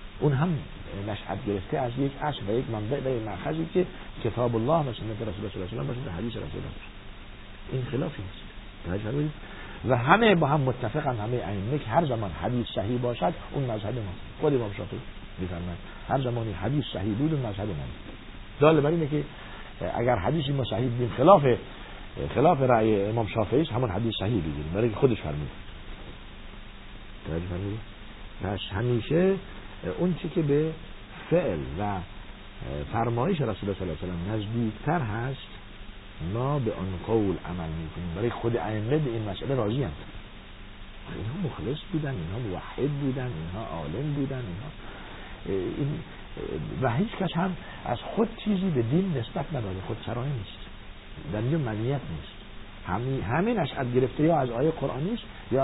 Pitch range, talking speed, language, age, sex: 100-135 Hz, 150 wpm, Persian, 50-69, male